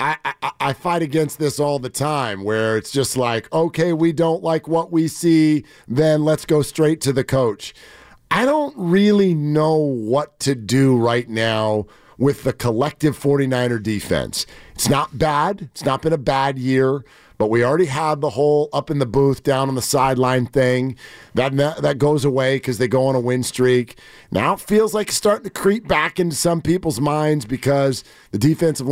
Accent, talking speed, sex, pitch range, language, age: American, 190 wpm, male, 125-155 Hz, English, 40-59